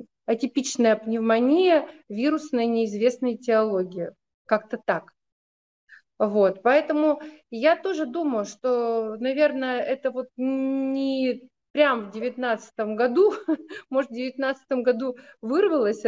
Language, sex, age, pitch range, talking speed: Russian, female, 30-49, 225-285 Hz, 95 wpm